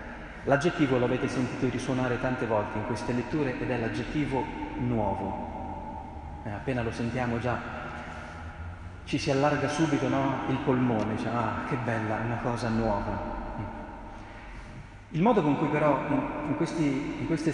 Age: 30-49